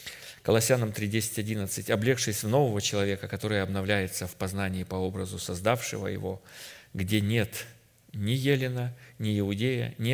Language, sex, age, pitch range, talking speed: Russian, male, 40-59, 105-130 Hz, 125 wpm